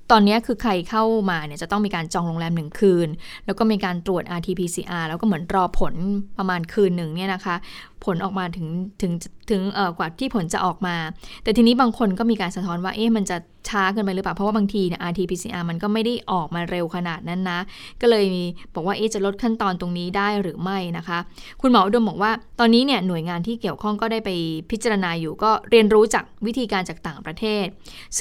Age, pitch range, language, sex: 20-39, 175-220 Hz, Thai, female